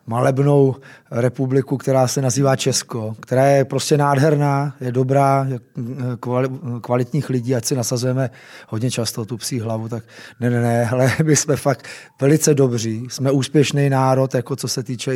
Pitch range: 120-140 Hz